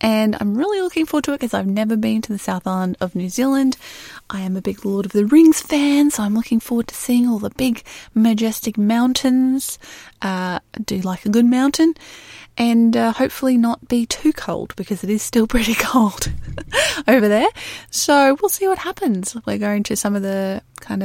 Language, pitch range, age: English, 195-255 Hz, 20-39